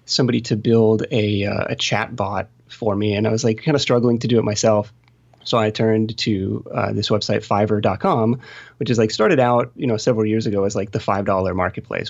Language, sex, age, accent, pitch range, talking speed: English, male, 20-39, American, 100-120 Hz, 220 wpm